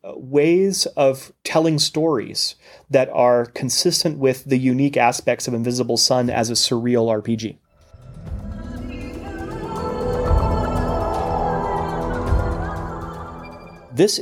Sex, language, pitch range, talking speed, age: male, English, 115-150 Hz, 80 wpm, 30-49